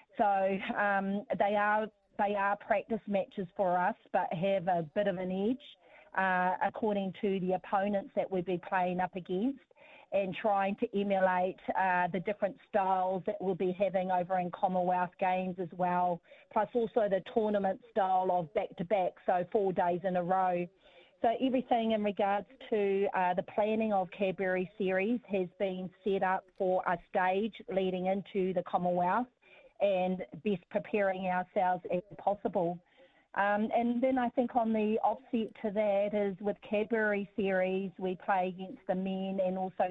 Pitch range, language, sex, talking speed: 185-215 Hz, English, female, 160 wpm